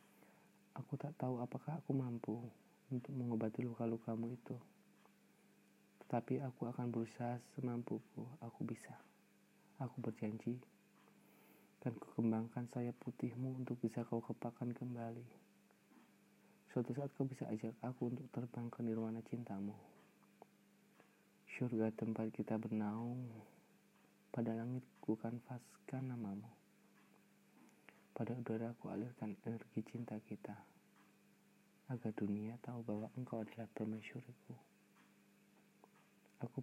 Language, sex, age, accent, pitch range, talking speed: Indonesian, male, 20-39, native, 110-125 Hz, 105 wpm